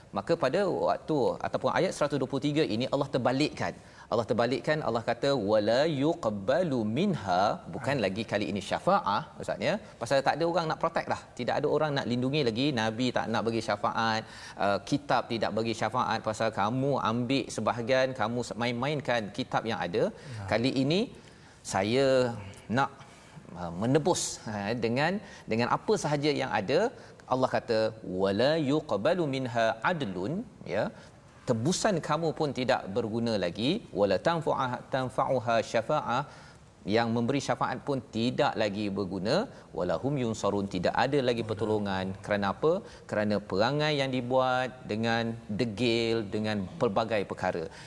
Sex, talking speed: male, 130 wpm